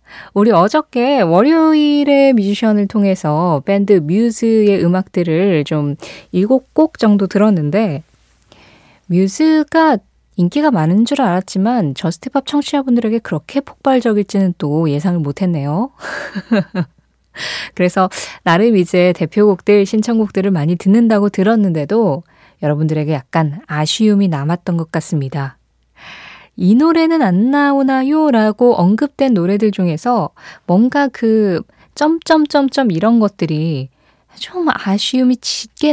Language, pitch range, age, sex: Korean, 165-235 Hz, 20-39, female